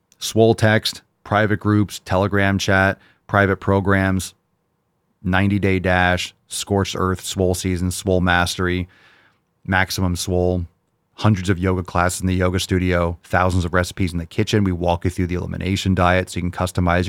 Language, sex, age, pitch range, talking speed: English, male, 30-49, 85-95 Hz, 155 wpm